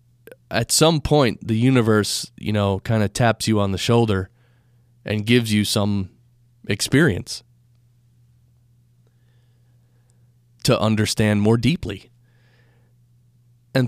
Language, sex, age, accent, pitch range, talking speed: English, male, 30-49, American, 110-125 Hz, 105 wpm